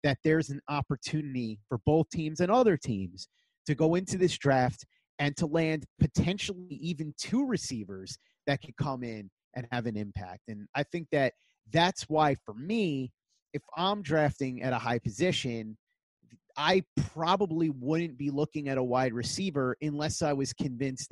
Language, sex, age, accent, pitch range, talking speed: English, male, 30-49, American, 125-155 Hz, 165 wpm